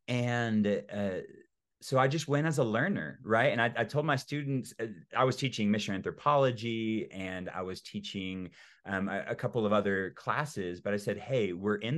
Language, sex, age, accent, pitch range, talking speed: English, male, 30-49, American, 105-150 Hz, 195 wpm